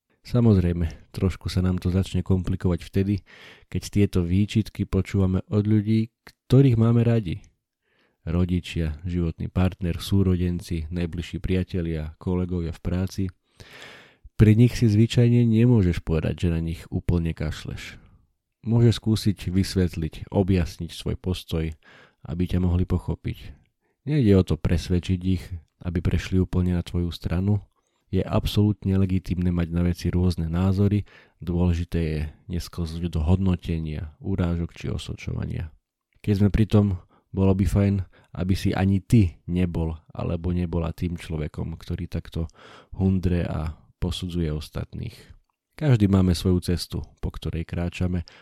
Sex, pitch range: male, 85-100 Hz